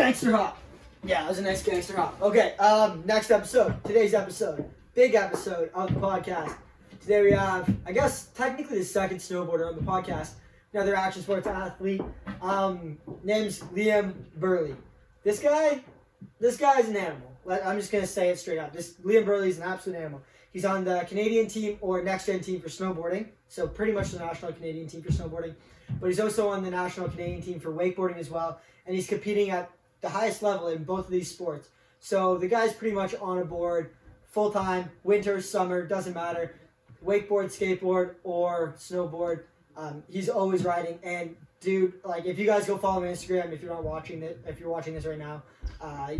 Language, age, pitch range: English, 20-39, 165-200 Hz